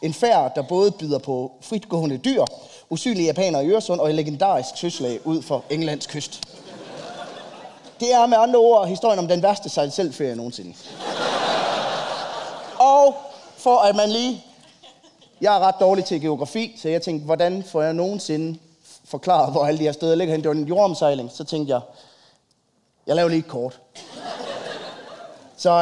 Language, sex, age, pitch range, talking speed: Danish, male, 20-39, 145-195 Hz, 155 wpm